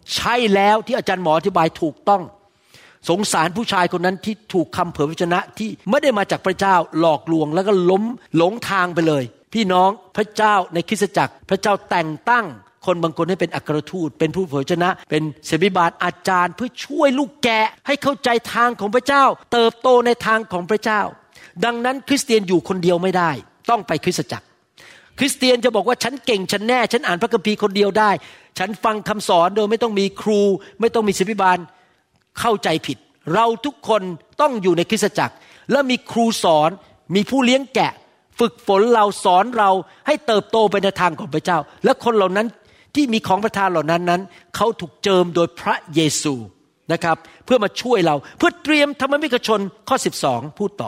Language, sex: Thai, male